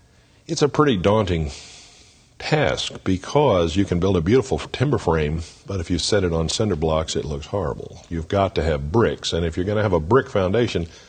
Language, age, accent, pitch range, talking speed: English, 50-69, American, 80-100 Hz, 200 wpm